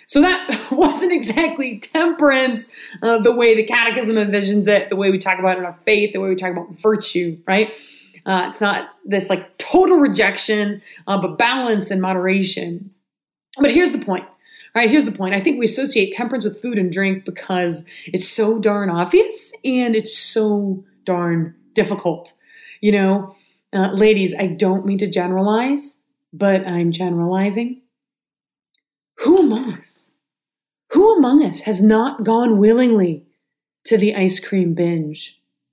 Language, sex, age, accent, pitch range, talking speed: English, female, 30-49, American, 195-300 Hz, 160 wpm